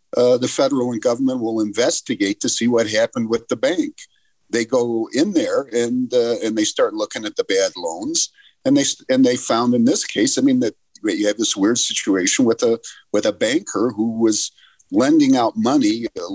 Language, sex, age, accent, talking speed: English, male, 50-69, American, 200 wpm